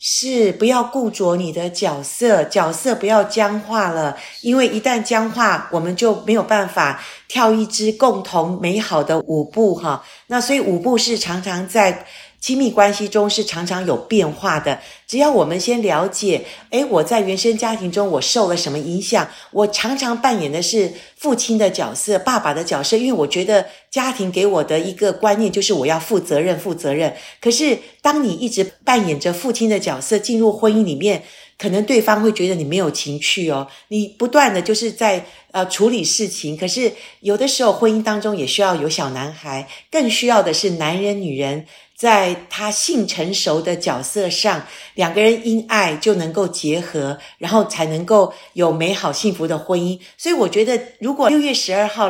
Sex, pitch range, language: female, 180-230 Hz, Chinese